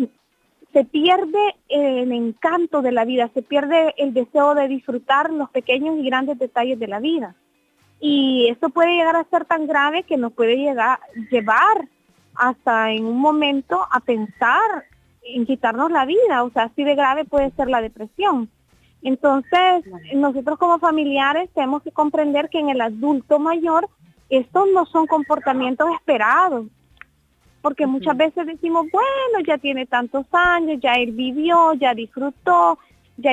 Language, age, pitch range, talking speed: Spanish, 30-49, 245-305 Hz, 150 wpm